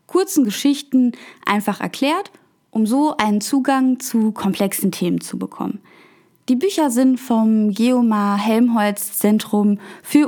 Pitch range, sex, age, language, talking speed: 190-245 Hz, female, 20-39, German, 125 wpm